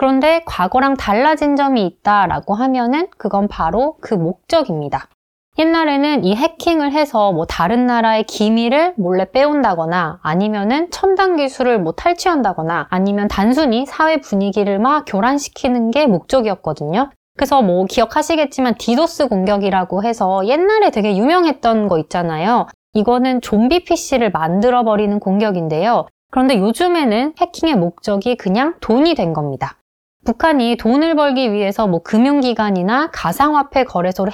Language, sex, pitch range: Korean, female, 195-285 Hz